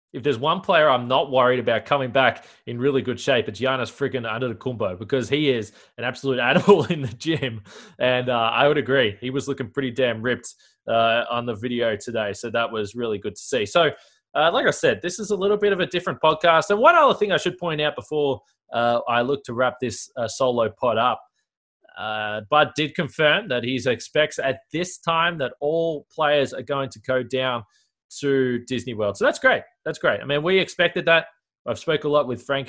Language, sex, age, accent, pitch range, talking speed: English, male, 20-39, Australian, 115-145 Hz, 225 wpm